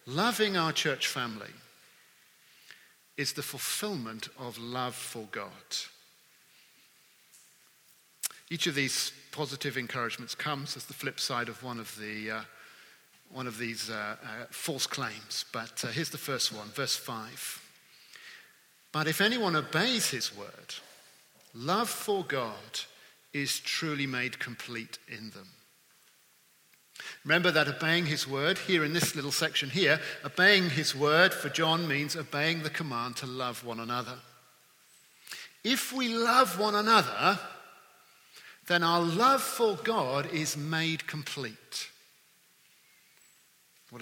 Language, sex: English, male